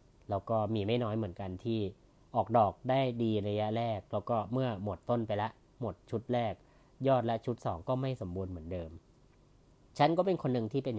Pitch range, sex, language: 105-130 Hz, female, Thai